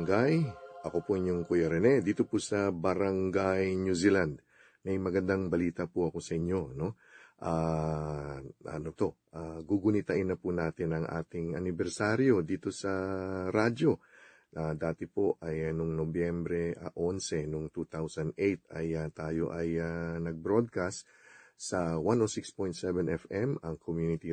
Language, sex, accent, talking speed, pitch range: English, male, Filipino, 140 wpm, 85-105 Hz